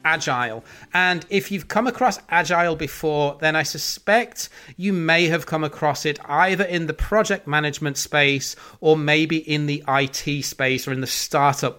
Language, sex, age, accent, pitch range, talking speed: English, male, 30-49, British, 140-165 Hz, 170 wpm